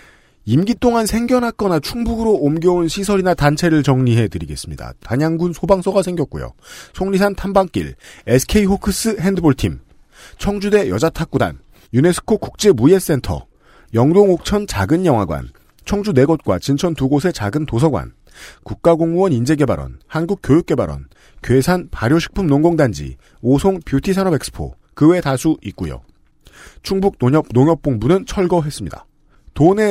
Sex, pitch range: male, 125-185 Hz